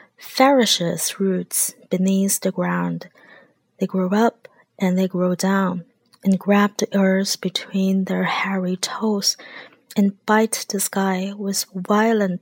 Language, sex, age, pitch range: Chinese, female, 20-39, 195-225 Hz